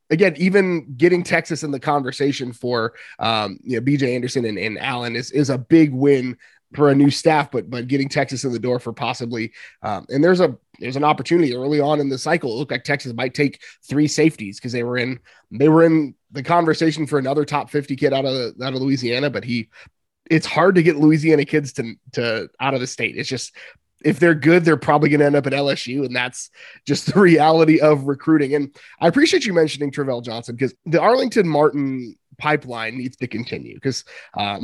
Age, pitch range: 20-39, 125-155 Hz